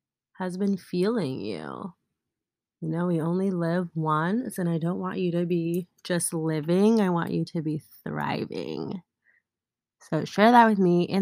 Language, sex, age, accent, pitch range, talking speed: English, female, 30-49, American, 160-210 Hz, 165 wpm